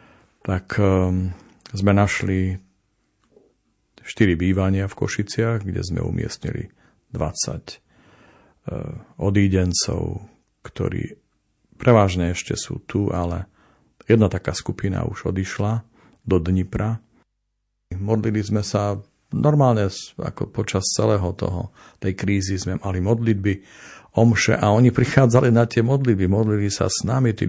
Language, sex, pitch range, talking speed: Slovak, male, 95-110 Hz, 115 wpm